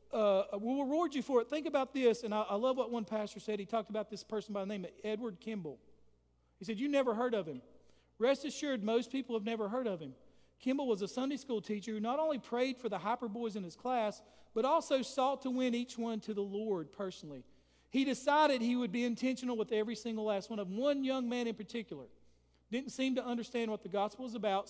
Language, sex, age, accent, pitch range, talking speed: English, male, 40-59, American, 210-255 Hz, 240 wpm